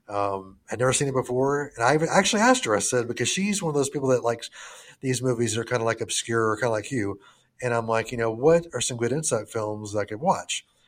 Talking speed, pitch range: 265 wpm, 110-140 Hz